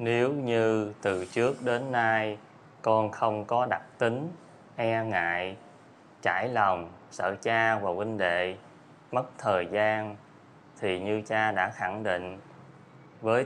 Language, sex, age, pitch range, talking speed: Vietnamese, male, 20-39, 105-120 Hz, 135 wpm